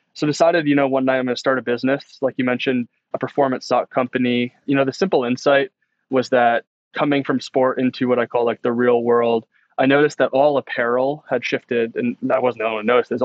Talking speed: 225 wpm